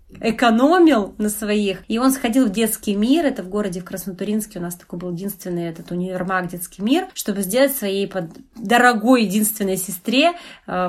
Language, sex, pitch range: Russian, female, 210-290 Hz